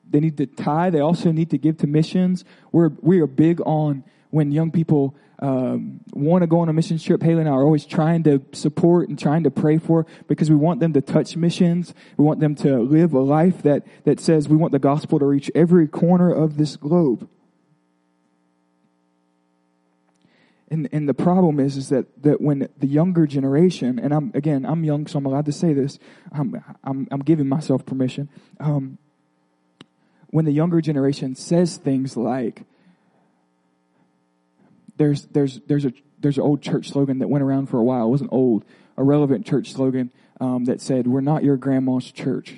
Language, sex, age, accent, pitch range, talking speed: English, male, 20-39, American, 130-160 Hz, 190 wpm